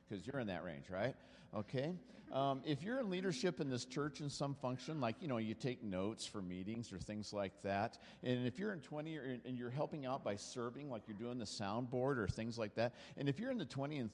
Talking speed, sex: 250 wpm, male